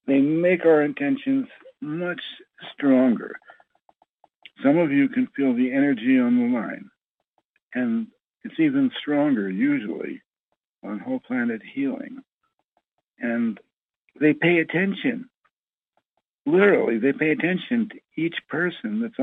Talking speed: 115 wpm